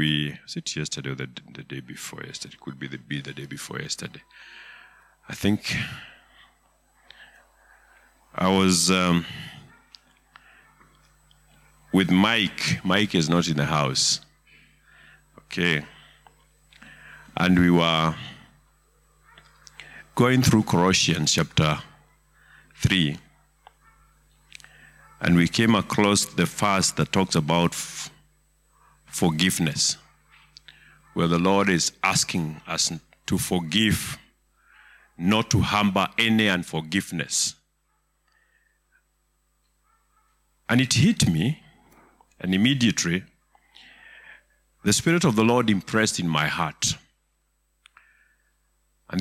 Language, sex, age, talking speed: English, male, 50-69, 100 wpm